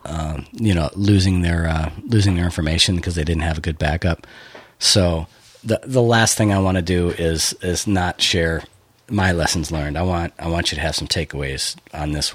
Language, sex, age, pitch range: English, male, 40-59, 85-110 Hz